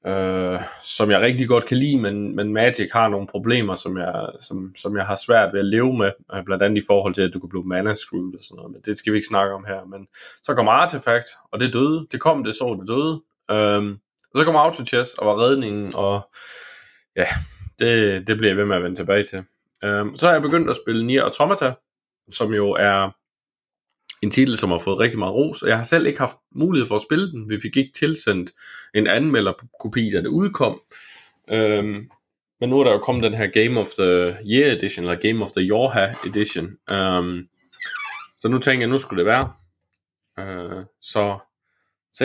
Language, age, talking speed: Danish, 20-39, 210 wpm